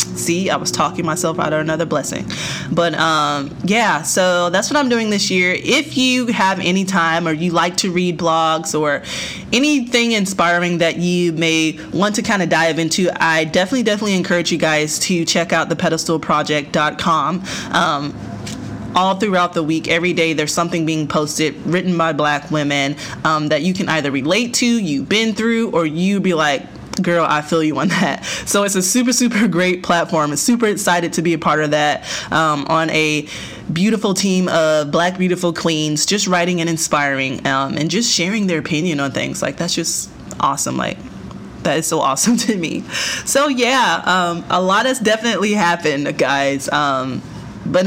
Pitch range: 155-195 Hz